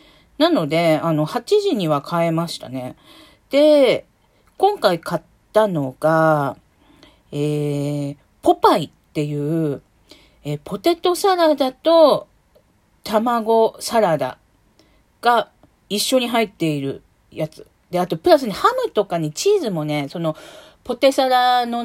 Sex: female